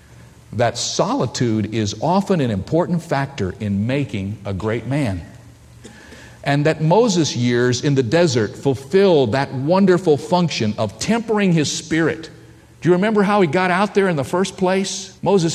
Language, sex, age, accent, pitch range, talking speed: English, male, 50-69, American, 115-165 Hz, 155 wpm